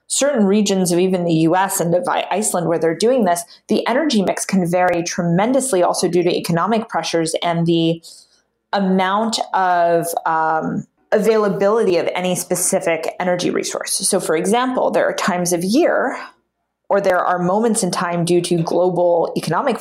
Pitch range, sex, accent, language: 170-200 Hz, female, American, English